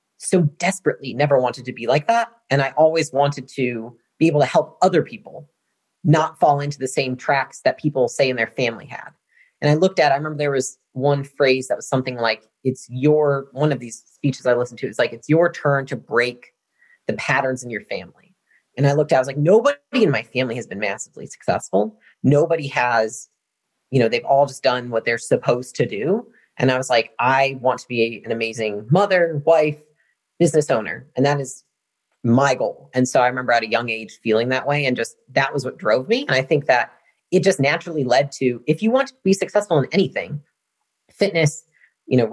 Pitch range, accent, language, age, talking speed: 125-155 Hz, American, English, 30-49, 215 wpm